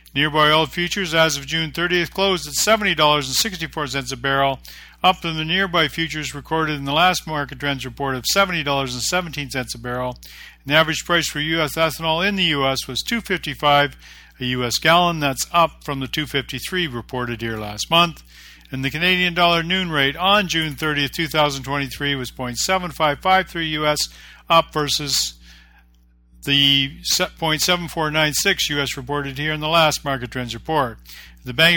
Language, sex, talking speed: English, male, 150 wpm